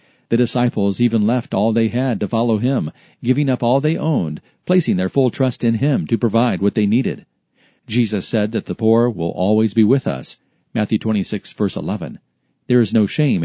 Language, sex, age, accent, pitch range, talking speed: English, male, 40-59, American, 110-135 Hz, 195 wpm